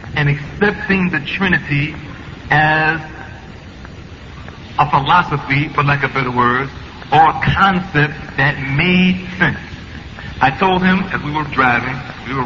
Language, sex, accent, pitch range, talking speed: Filipino, male, American, 135-185 Hz, 130 wpm